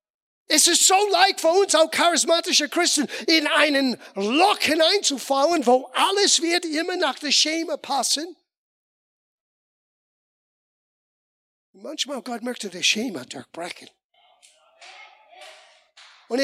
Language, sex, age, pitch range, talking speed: German, male, 50-69, 230-320 Hz, 115 wpm